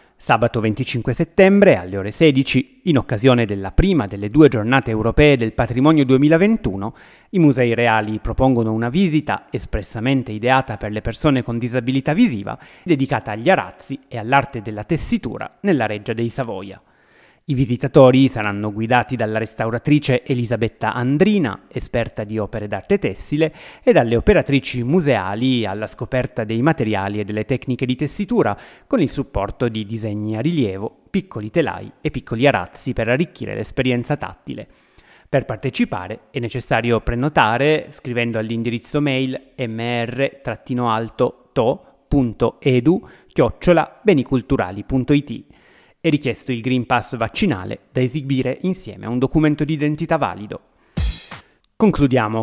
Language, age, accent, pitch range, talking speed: Italian, 30-49, native, 115-145 Hz, 125 wpm